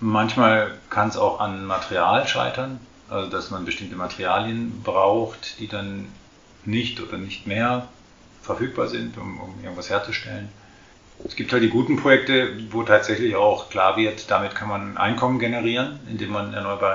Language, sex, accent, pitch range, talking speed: German, male, German, 95-110 Hz, 155 wpm